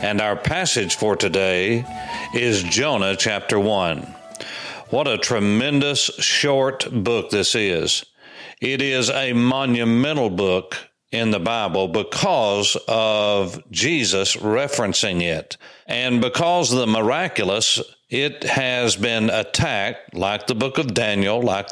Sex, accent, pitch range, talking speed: male, American, 105-140 Hz, 120 wpm